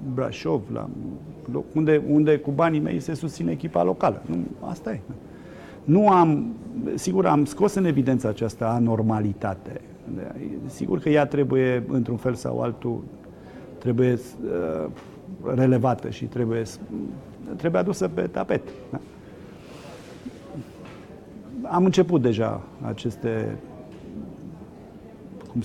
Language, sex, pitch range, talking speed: Romanian, male, 115-145 Hz, 110 wpm